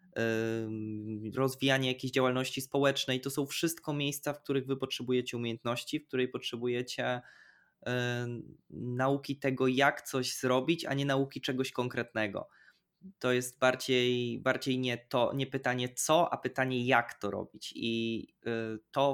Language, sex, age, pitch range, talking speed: Polish, male, 20-39, 125-140 Hz, 130 wpm